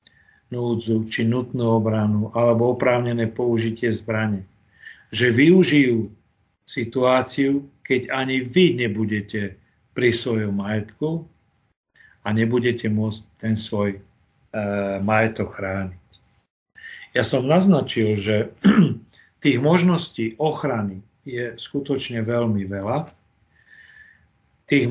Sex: male